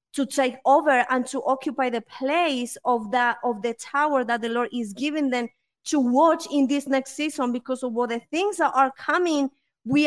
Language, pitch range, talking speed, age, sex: English, 235-270 Hz, 205 wpm, 20-39, female